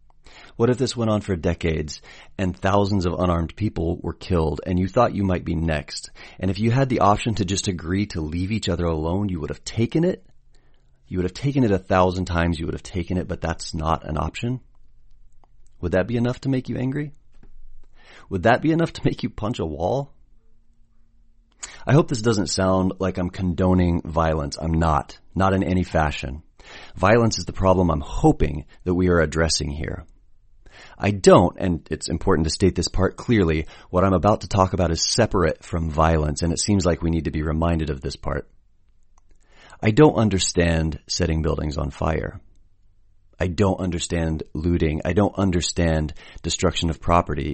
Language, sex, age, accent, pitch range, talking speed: English, male, 30-49, American, 80-100 Hz, 190 wpm